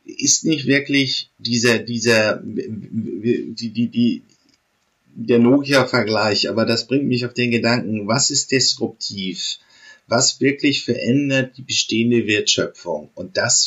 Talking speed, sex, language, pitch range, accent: 125 wpm, male, German, 110-135 Hz, German